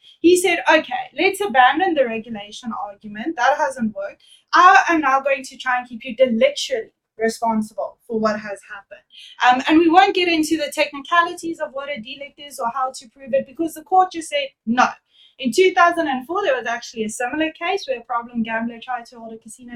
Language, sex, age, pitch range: English, female, 20-39, 235-320 Hz